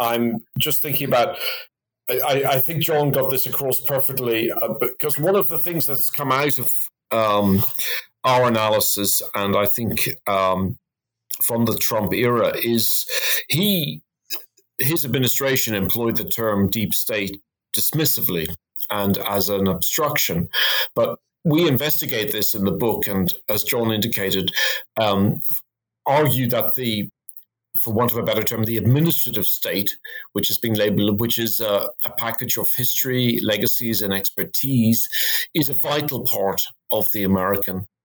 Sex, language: male, English